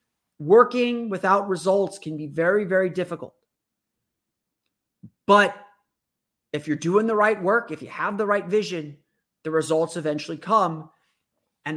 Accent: American